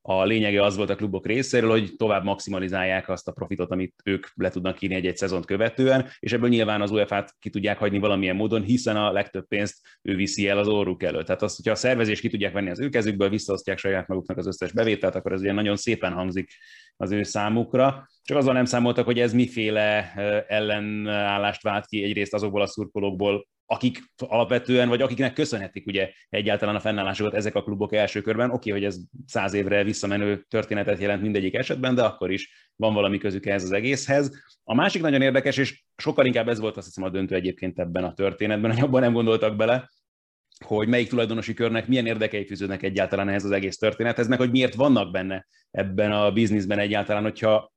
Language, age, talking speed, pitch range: Hungarian, 30-49, 200 wpm, 100-115 Hz